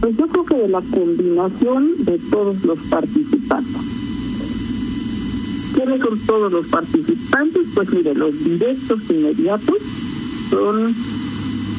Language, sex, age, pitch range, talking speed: Spanish, male, 50-69, 205-275 Hz, 110 wpm